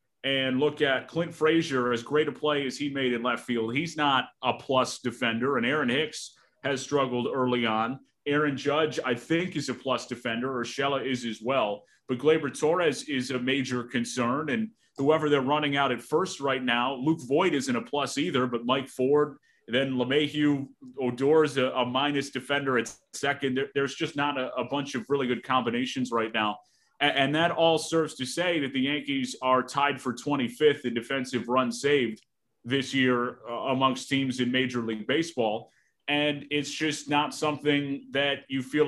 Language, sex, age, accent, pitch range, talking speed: English, male, 30-49, American, 125-145 Hz, 185 wpm